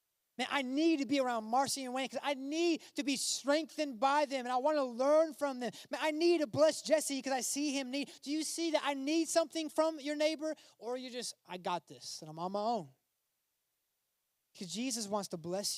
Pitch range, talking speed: 180-270 Hz, 230 wpm